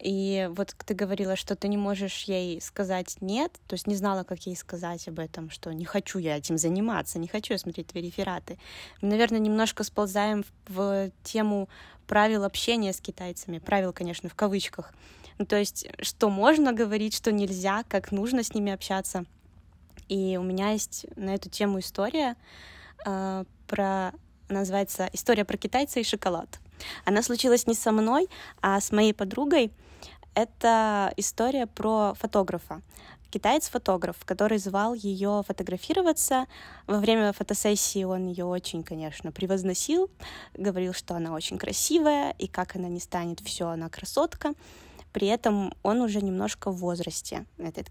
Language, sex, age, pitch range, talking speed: Russian, female, 20-39, 185-215 Hz, 155 wpm